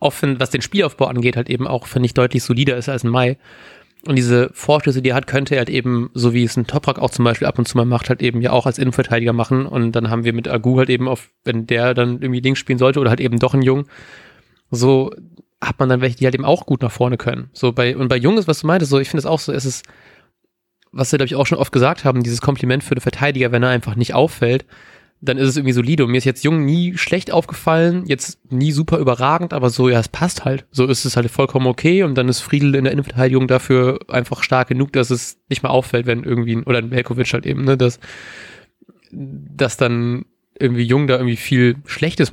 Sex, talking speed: male, 250 wpm